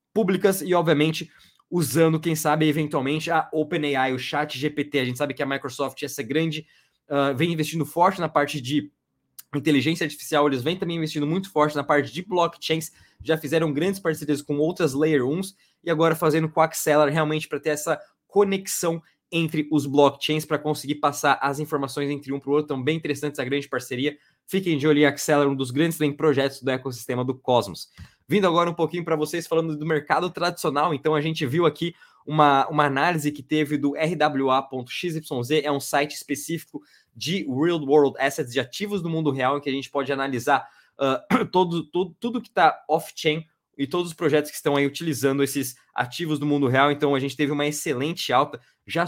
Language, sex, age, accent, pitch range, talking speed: Portuguese, male, 20-39, Brazilian, 145-165 Hz, 190 wpm